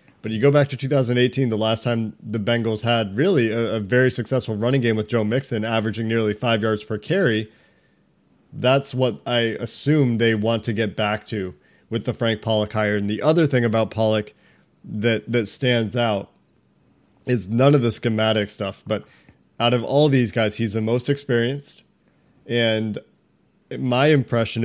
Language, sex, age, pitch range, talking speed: English, male, 30-49, 110-130 Hz, 175 wpm